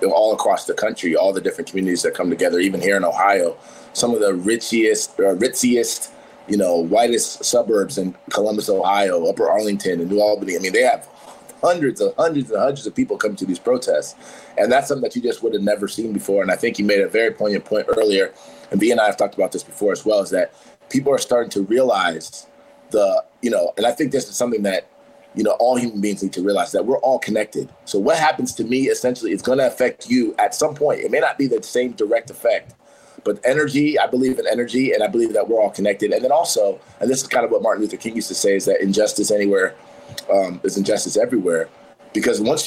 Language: English